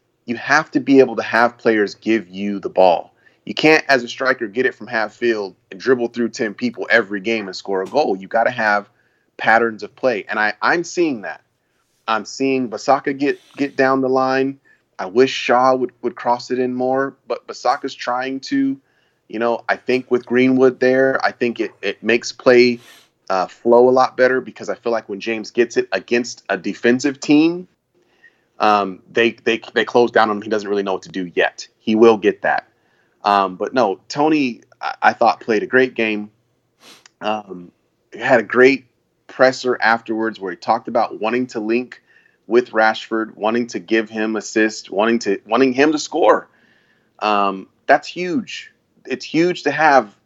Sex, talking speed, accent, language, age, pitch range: male, 190 wpm, American, English, 30-49, 110-130 Hz